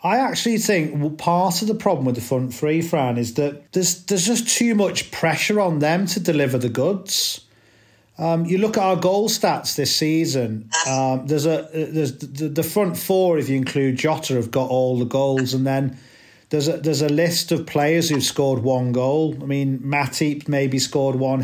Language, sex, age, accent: English, male, 40-59, British